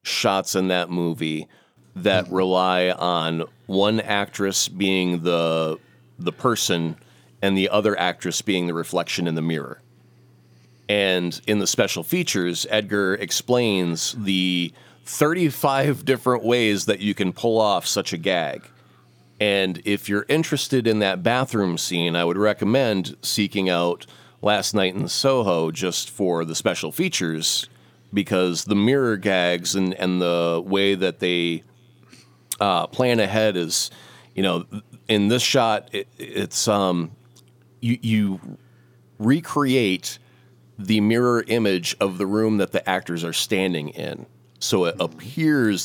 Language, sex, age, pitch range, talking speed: English, male, 30-49, 85-110 Hz, 135 wpm